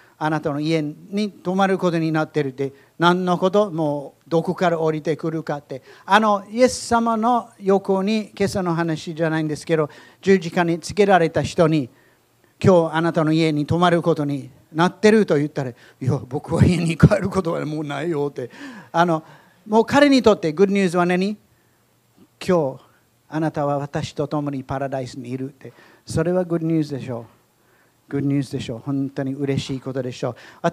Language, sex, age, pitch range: Japanese, male, 40-59, 145-190 Hz